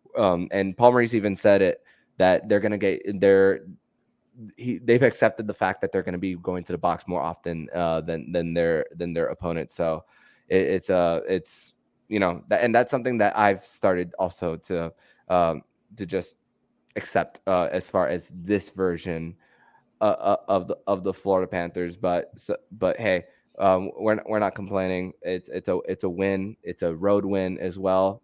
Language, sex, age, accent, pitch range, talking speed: English, male, 20-39, American, 90-100 Hz, 185 wpm